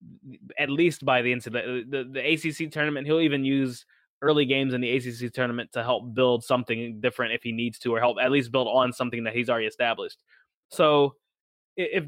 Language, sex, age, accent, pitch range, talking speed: English, male, 20-39, American, 120-145 Hz, 195 wpm